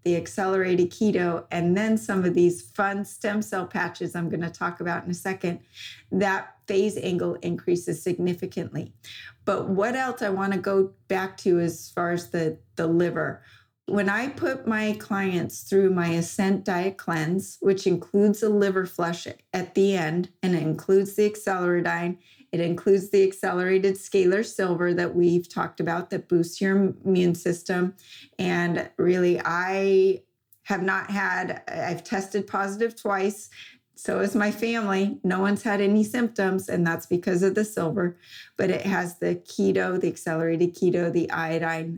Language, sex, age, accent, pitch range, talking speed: English, female, 30-49, American, 175-195 Hz, 160 wpm